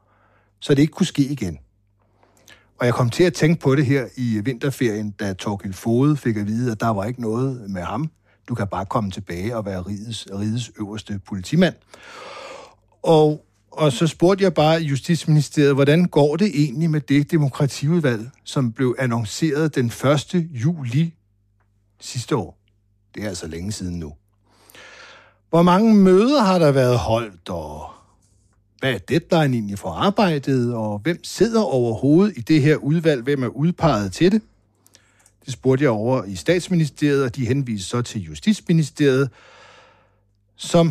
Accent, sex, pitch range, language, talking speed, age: native, male, 105-155 Hz, Danish, 160 wpm, 60-79